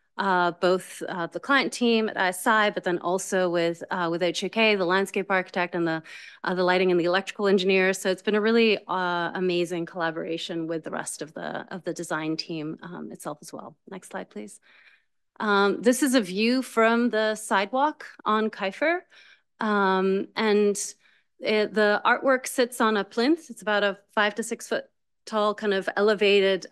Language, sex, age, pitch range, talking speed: English, female, 30-49, 175-215 Hz, 180 wpm